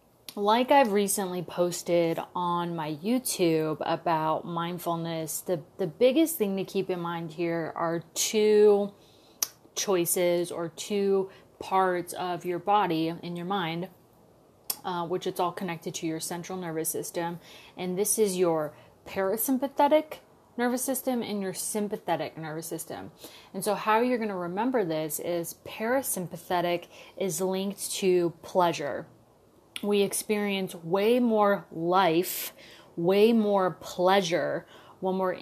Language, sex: English, female